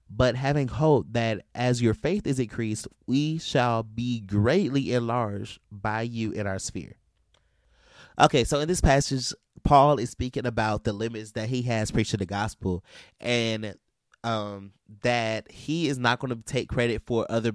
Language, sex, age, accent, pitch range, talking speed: English, male, 20-39, American, 100-120 Hz, 165 wpm